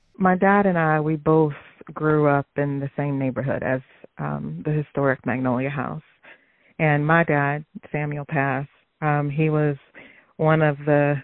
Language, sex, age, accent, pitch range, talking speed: English, female, 40-59, American, 135-150 Hz, 155 wpm